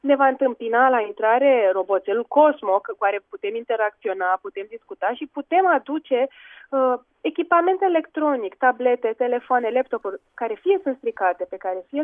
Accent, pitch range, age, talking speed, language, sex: native, 220-315 Hz, 20-39, 145 wpm, Romanian, female